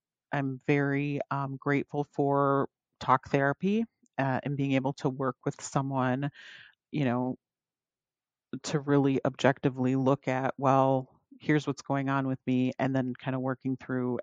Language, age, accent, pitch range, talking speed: English, 40-59, American, 130-150 Hz, 150 wpm